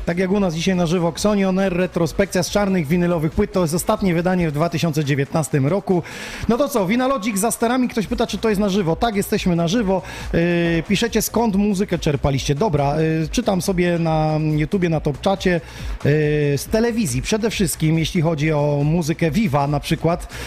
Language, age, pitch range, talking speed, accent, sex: Polish, 30-49, 155-200 Hz, 185 wpm, native, male